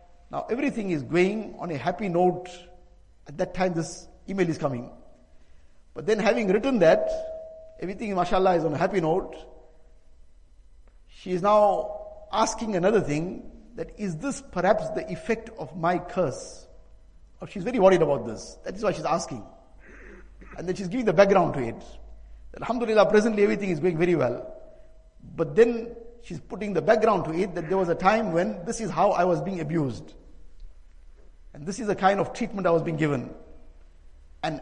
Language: English